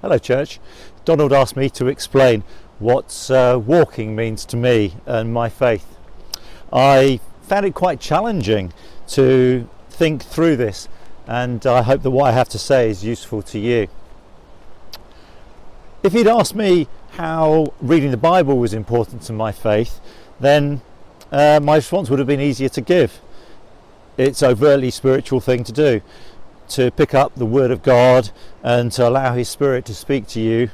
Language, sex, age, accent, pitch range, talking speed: English, male, 50-69, British, 115-150 Hz, 165 wpm